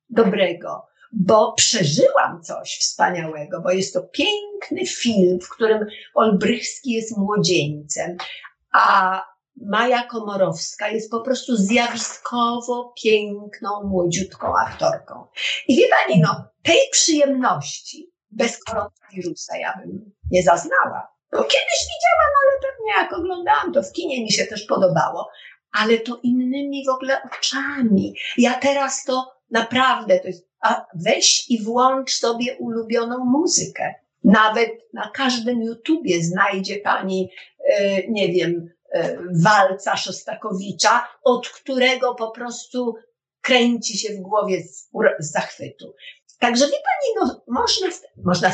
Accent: native